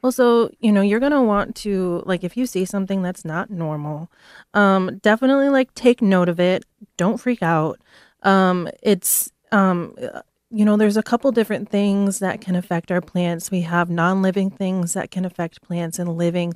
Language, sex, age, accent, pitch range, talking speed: English, female, 30-49, American, 175-210 Hz, 190 wpm